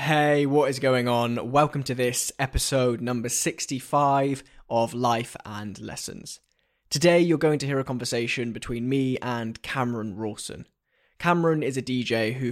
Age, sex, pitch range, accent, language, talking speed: 10-29, male, 120-140 Hz, British, English, 155 wpm